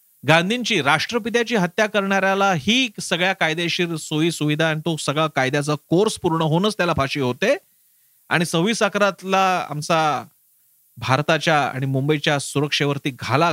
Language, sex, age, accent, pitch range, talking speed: Marathi, male, 40-59, native, 150-200 Hz, 110 wpm